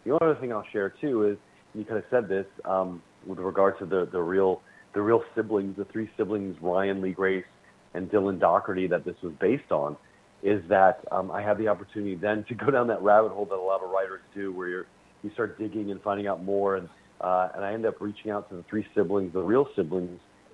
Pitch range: 90-105 Hz